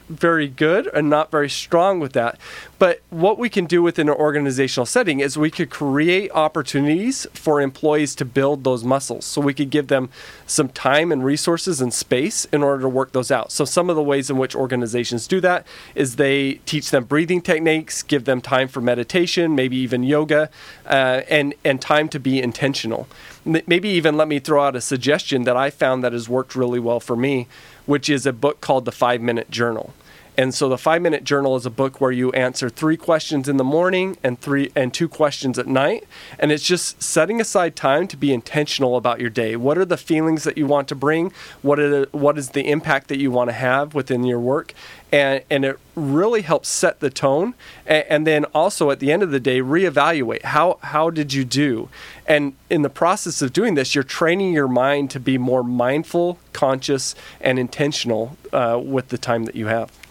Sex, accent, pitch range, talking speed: male, American, 130-155 Hz, 210 wpm